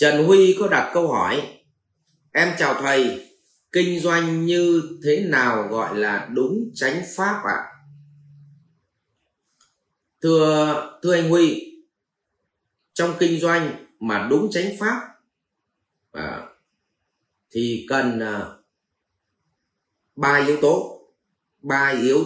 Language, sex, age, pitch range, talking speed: Vietnamese, male, 30-49, 135-200 Hz, 100 wpm